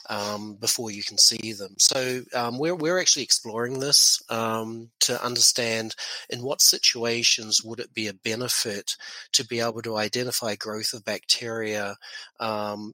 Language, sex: English, male